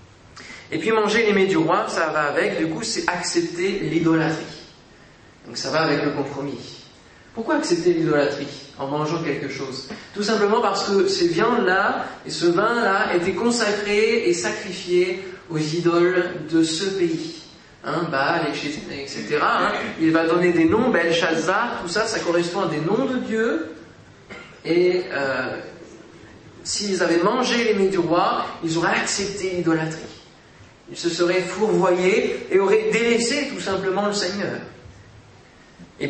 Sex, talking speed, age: male, 150 wpm, 30-49